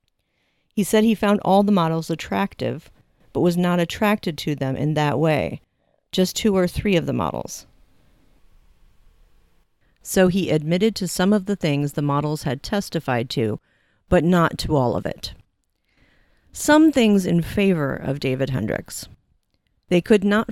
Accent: American